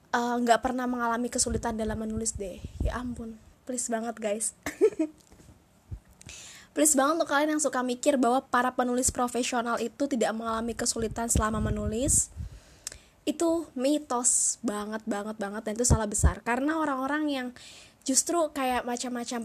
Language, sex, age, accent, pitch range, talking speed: Indonesian, female, 20-39, native, 225-285 Hz, 140 wpm